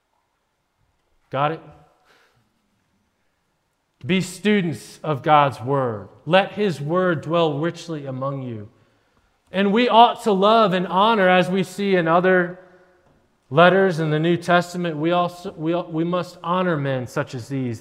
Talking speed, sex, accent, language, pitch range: 140 wpm, male, American, English, 135-170 Hz